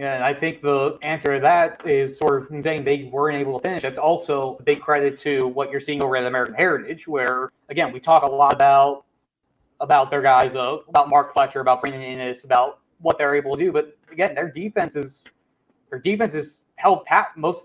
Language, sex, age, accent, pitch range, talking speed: English, male, 20-39, American, 140-165 Hz, 220 wpm